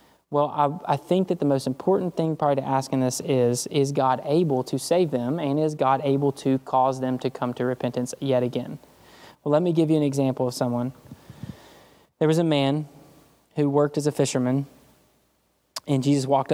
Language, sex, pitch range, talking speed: English, male, 130-150 Hz, 200 wpm